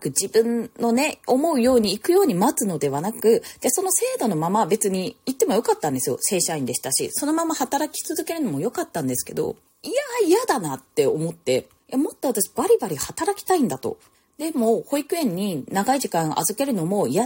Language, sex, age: Japanese, female, 20-39